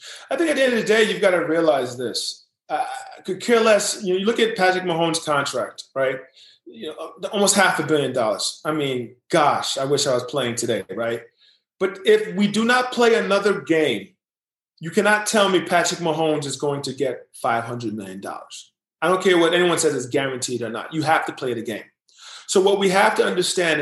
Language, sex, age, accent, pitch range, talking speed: English, male, 30-49, American, 160-210 Hz, 210 wpm